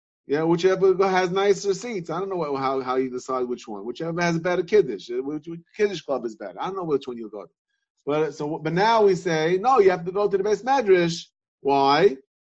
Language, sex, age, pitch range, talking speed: English, male, 30-49, 160-205 Hz, 240 wpm